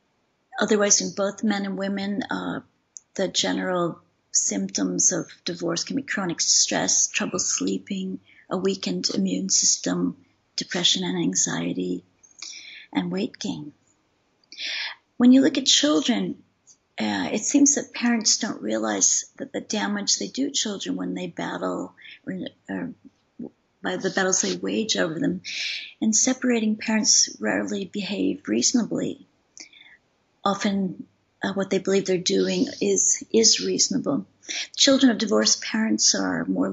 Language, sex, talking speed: English, female, 130 wpm